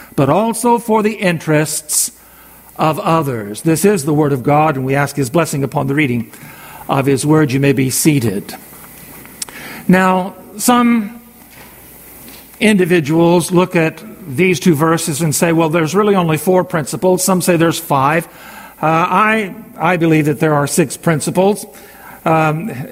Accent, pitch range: American, 155-200 Hz